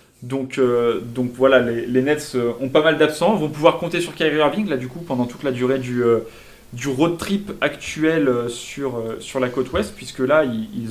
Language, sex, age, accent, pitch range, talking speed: French, male, 20-39, French, 125-160 Hz, 225 wpm